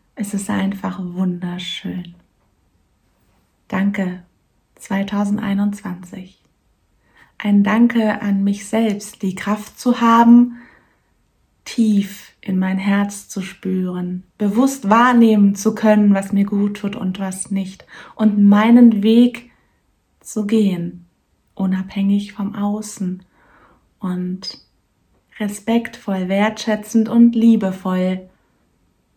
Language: German